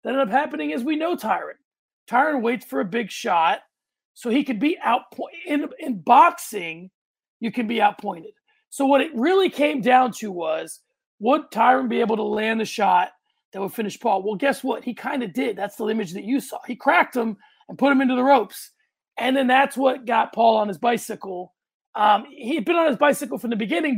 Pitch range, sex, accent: 205-275 Hz, male, American